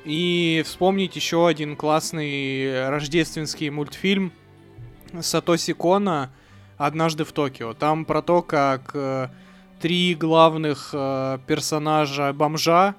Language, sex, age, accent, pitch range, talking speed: Russian, male, 20-39, native, 140-170 Hz, 90 wpm